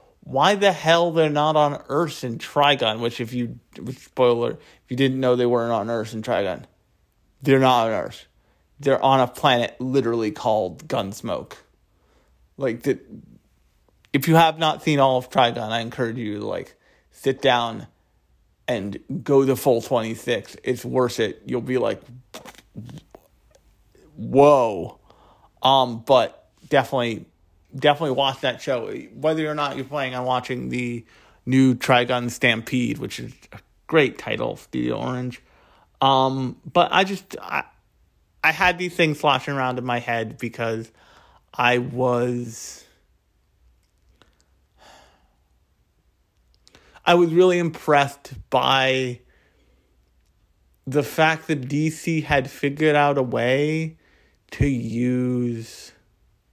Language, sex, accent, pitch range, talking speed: English, male, American, 115-145 Hz, 130 wpm